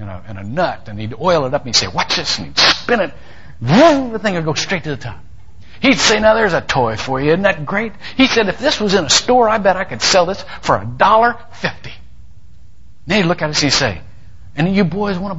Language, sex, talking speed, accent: English, male, 270 wpm, American